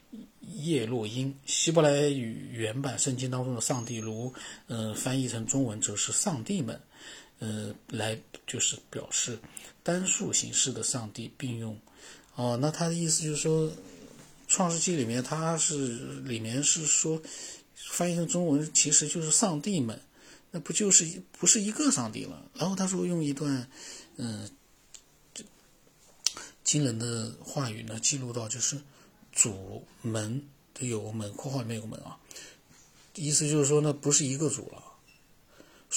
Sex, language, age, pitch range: male, Chinese, 50-69, 120-155 Hz